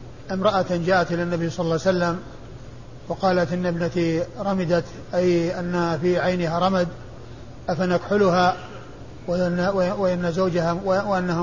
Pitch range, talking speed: 175-195 Hz, 115 wpm